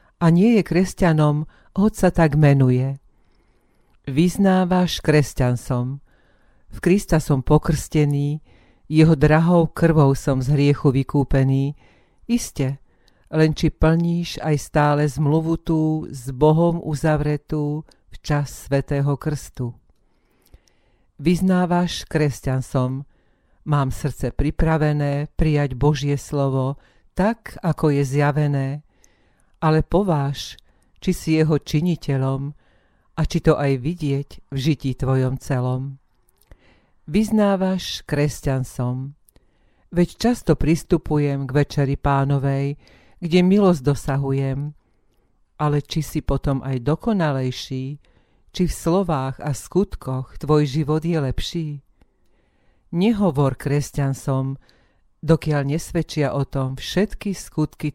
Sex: female